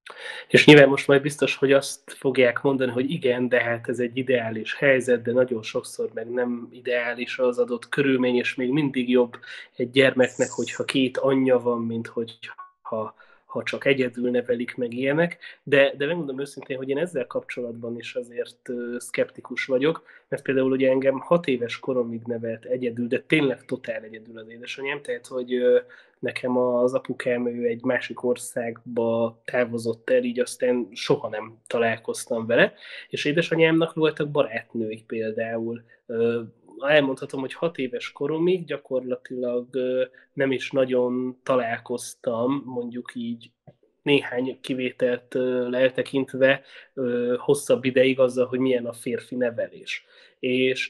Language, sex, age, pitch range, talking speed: Hungarian, male, 20-39, 120-145 Hz, 140 wpm